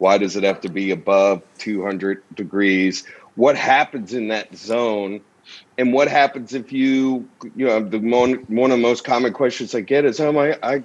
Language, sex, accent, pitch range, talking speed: English, male, American, 105-130 Hz, 190 wpm